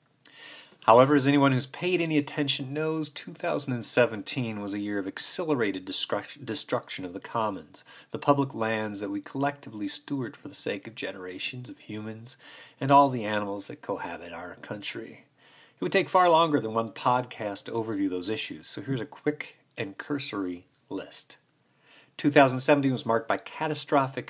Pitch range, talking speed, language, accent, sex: 110-145 Hz, 160 wpm, English, American, male